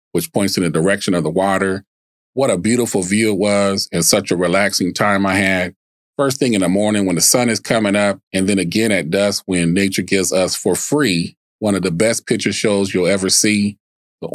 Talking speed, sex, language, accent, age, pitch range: 220 wpm, male, English, American, 40-59, 95-110 Hz